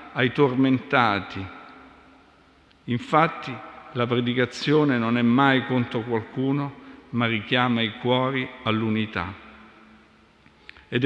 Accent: native